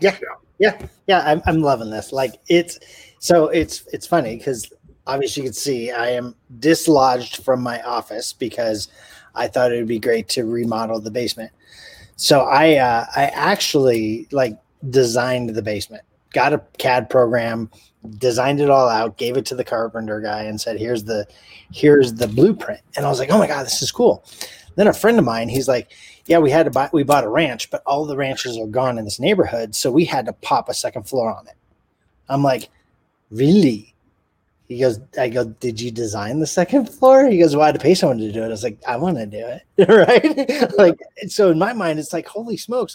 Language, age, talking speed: English, 30-49, 210 wpm